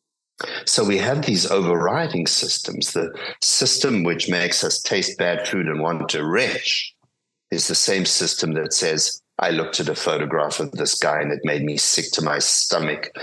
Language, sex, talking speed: English, male, 180 wpm